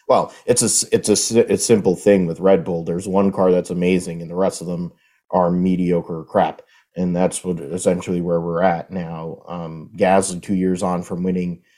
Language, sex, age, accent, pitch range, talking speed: English, male, 30-49, American, 85-100 Hz, 200 wpm